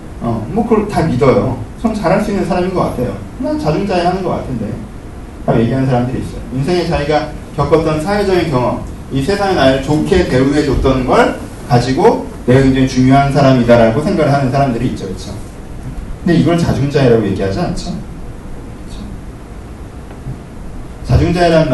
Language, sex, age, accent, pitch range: Korean, male, 30-49, native, 120-175 Hz